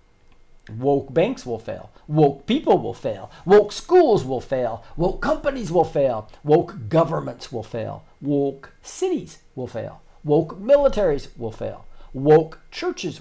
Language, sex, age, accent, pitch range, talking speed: English, male, 40-59, American, 110-145 Hz, 135 wpm